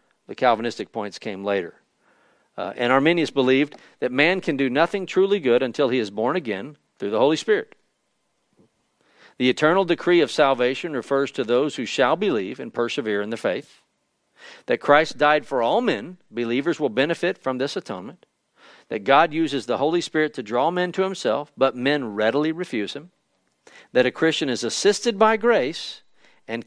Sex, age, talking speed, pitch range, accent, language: male, 50-69, 175 wpm, 120-165 Hz, American, English